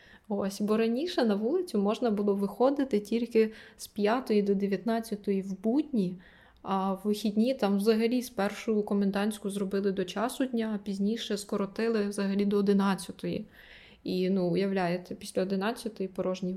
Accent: native